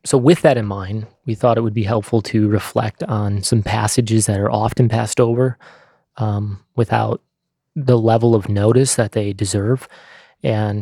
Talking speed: 170 wpm